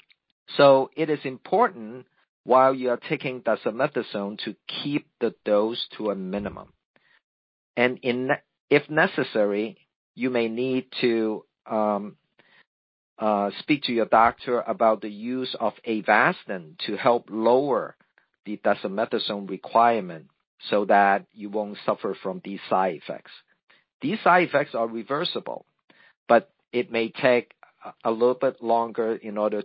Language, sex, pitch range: English, male, 105-130 Hz